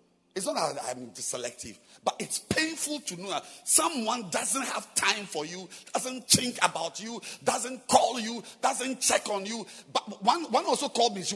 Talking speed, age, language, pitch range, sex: 195 wpm, 50-69, English, 185-295 Hz, male